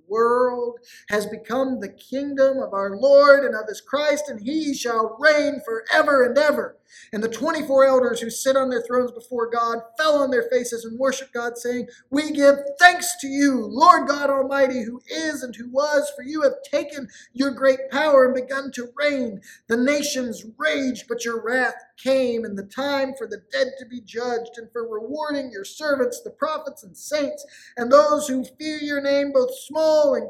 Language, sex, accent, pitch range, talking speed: English, male, American, 215-280 Hz, 190 wpm